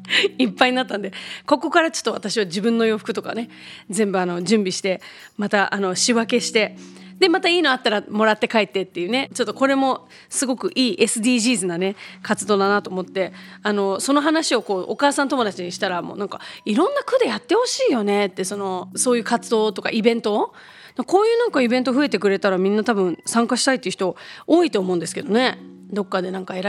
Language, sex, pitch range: Japanese, female, 205-280 Hz